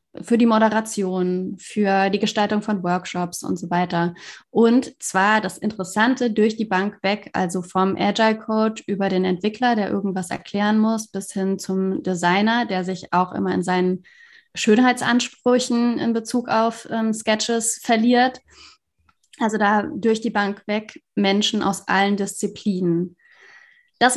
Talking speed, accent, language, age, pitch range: 145 wpm, German, German, 20-39, 195-240 Hz